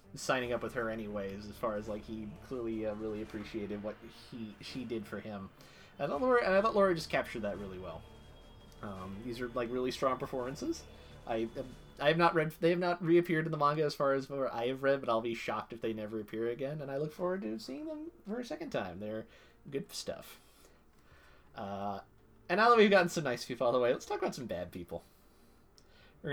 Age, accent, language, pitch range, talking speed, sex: 30-49, American, English, 105-155 Hz, 230 wpm, male